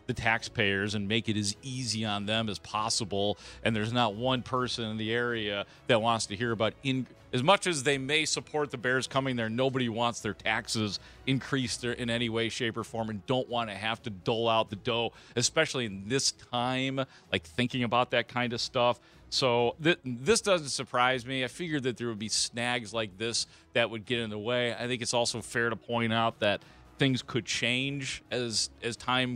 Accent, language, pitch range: American, English, 105-125 Hz